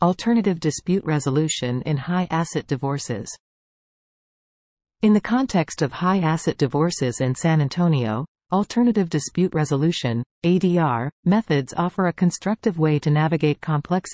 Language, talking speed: English, 125 wpm